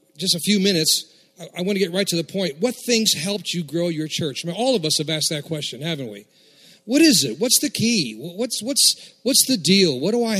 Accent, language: American, English